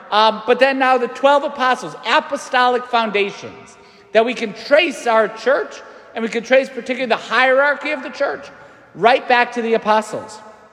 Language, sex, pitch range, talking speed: English, male, 205-245 Hz, 160 wpm